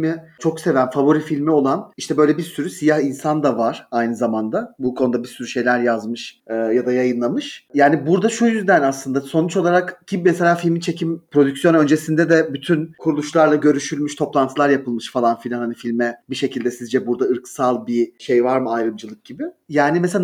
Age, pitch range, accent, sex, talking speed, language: 40-59, 135-180 Hz, native, male, 180 wpm, Turkish